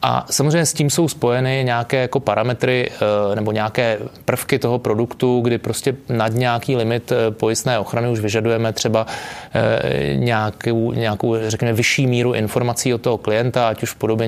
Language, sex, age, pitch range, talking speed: Czech, male, 20-39, 115-125 Hz, 155 wpm